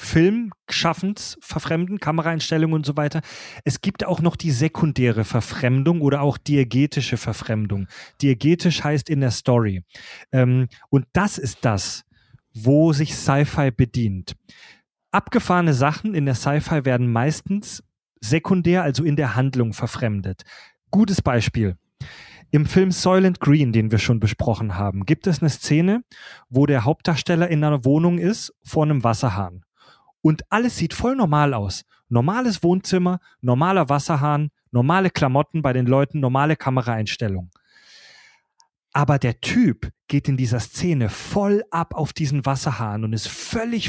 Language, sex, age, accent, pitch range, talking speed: German, male, 30-49, German, 120-165 Hz, 140 wpm